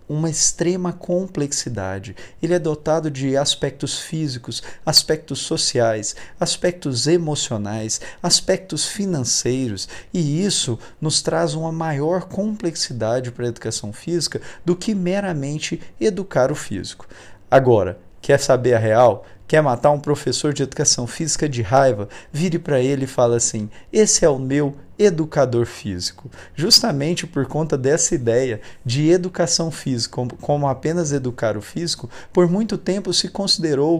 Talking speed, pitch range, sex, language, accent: 135 wpm, 125-180 Hz, male, Portuguese, Brazilian